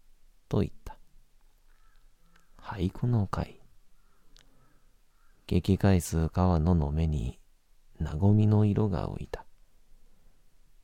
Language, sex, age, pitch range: Japanese, male, 40-59, 80-95 Hz